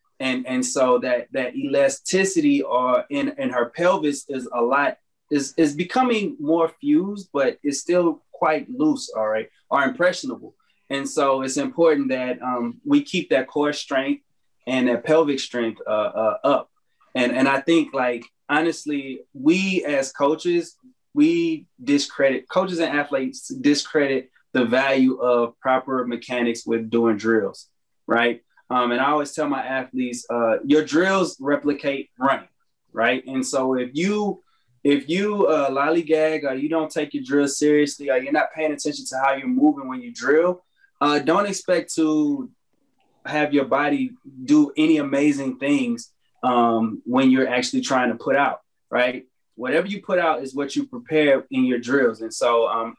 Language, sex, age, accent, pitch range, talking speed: English, male, 20-39, American, 130-180 Hz, 160 wpm